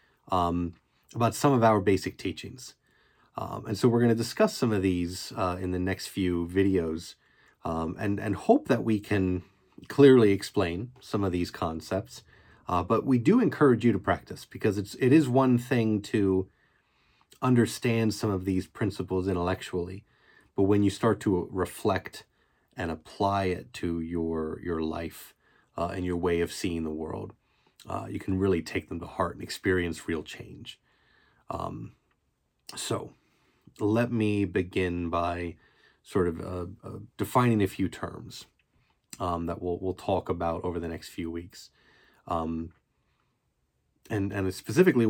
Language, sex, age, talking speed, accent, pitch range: English, male, 30-49, 160 wpm, American, 85-110 Hz